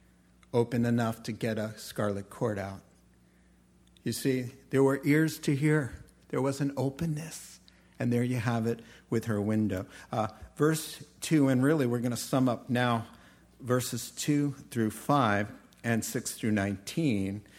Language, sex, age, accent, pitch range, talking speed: English, male, 50-69, American, 105-135 Hz, 155 wpm